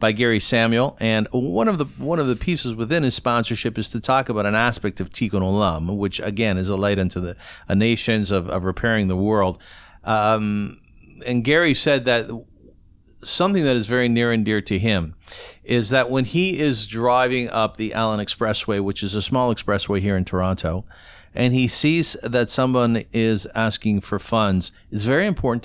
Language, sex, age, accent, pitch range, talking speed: English, male, 50-69, American, 100-125 Hz, 185 wpm